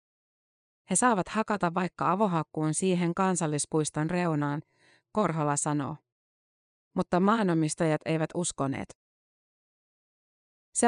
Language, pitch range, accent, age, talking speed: Finnish, 155-185 Hz, native, 30-49, 85 wpm